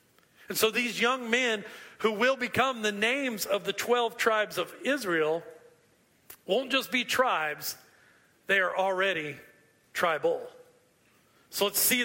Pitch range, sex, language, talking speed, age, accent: 170-215 Hz, male, English, 135 wpm, 40-59, American